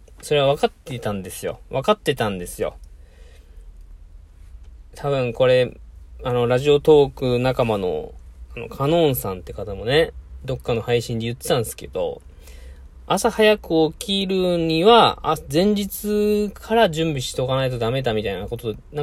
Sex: male